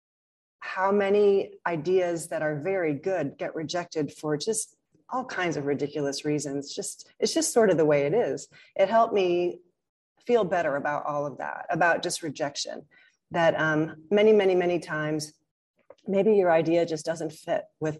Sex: female